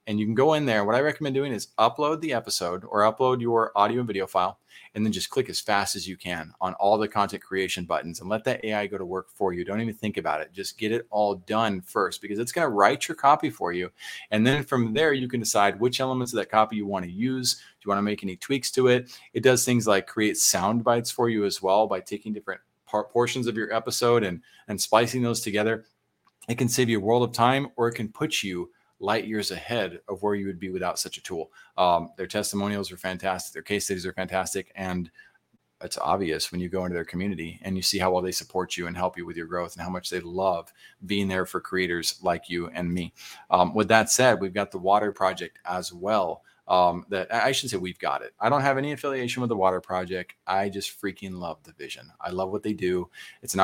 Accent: American